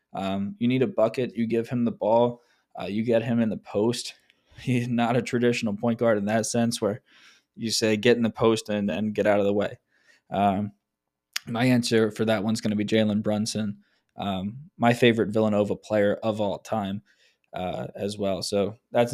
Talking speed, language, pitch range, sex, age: 200 wpm, English, 105-120 Hz, male, 20-39